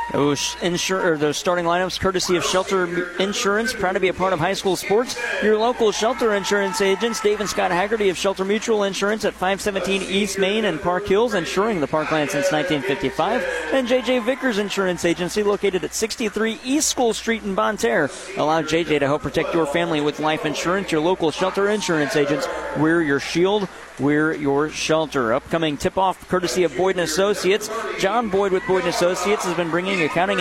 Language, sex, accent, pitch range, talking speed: English, male, American, 165-210 Hz, 180 wpm